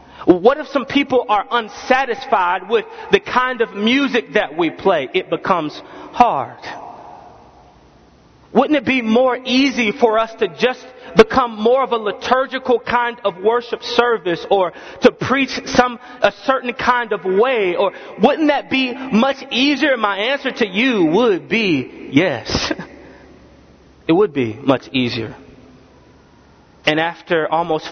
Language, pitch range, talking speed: English, 180-255 Hz, 140 wpm